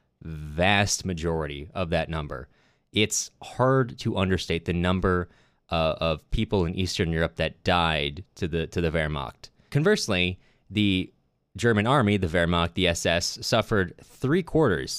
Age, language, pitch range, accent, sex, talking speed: 20-39, English, 85-115 Hz, American, male, 140 wpm